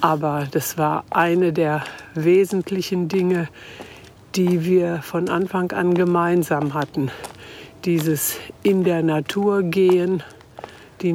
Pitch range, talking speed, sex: 155-180 Hz, 110 wpm, female